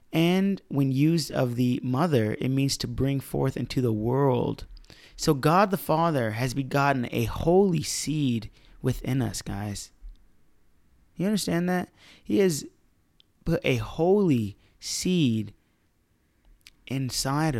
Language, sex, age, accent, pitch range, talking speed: English, male, 30-49, American, 110-150 Hz, 125 wpm